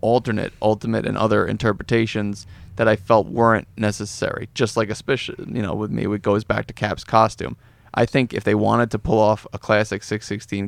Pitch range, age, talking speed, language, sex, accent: 105-120 Hz, 30-49, 190 wpm, English, male, American